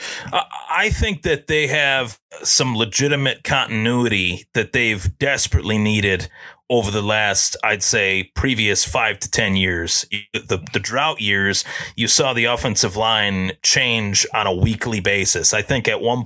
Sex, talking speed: male, 150 wpm